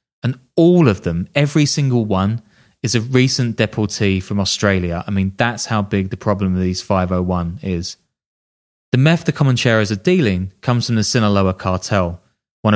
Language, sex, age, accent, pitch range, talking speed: English, male, 20-39, British, 95-125 Hz, 170 wpm